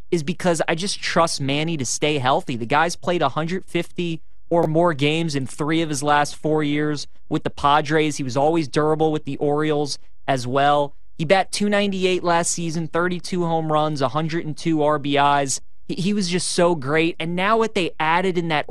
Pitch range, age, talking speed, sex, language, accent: 145-170 Hz, 20-39, 185 wpm, male, English, American